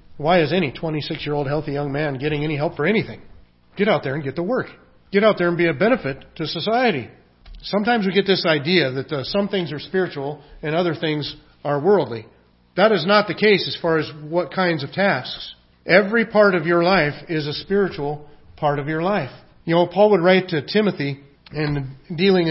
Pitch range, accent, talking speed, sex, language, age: 145-190 Hz, American, 205 wpm, male, English, 40-59